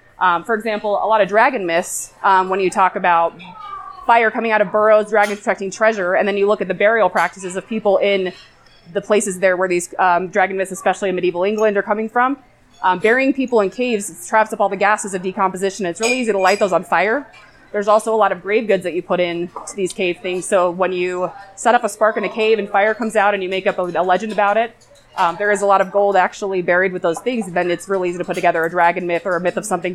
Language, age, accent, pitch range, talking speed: English, 20-39, American, 185-220 Hz, 265 wpm